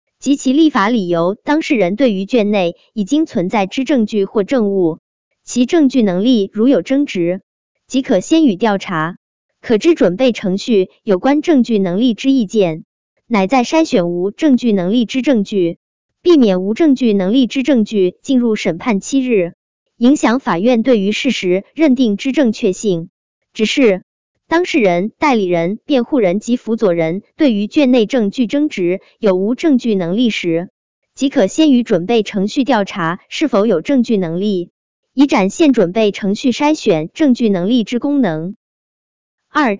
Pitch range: 195-265 Hz